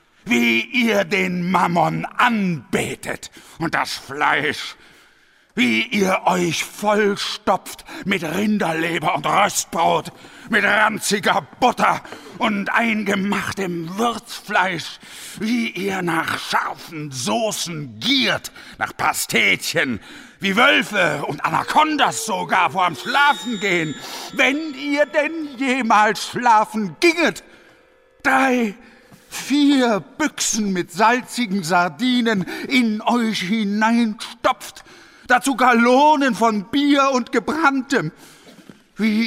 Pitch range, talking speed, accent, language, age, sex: 180-250 Hz, 95 wpm, German, German, 60-79, male